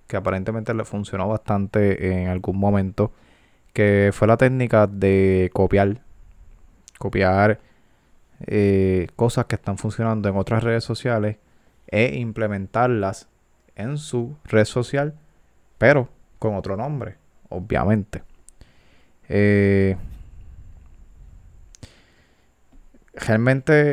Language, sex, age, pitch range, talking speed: Spanish, male, 20-39, 95-110 Hz, 95 wpm